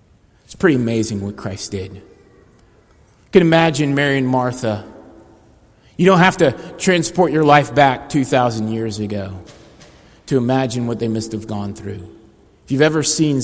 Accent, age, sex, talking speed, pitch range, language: American, 30-49, male, 150 wpm, 110-140 Hz, English